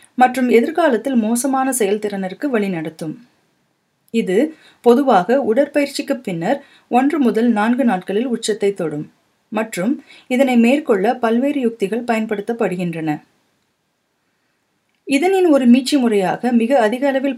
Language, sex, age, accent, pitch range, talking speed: Tamil, female, 30-49, native, 200-265 Hz, 95 wpm